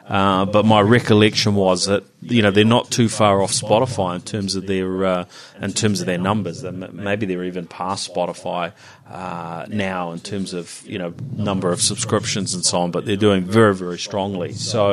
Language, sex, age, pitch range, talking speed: English, male, 30-49, 95-110 Hz, 200 wpm